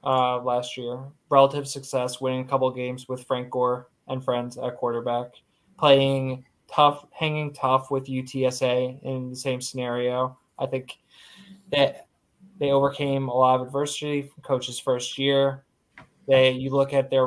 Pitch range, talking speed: 120-135 Hz, 155 wpm